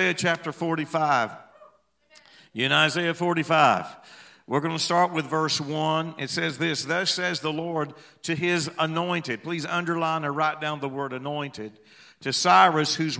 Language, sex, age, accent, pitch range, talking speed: English, male, 50-69, American, 150-185 Hz, 150 wpm